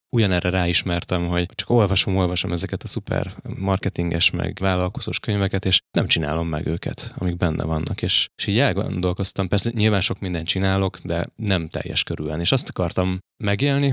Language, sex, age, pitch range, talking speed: Hungarian, male, 20-39, 90-105 Hz, 165 wpm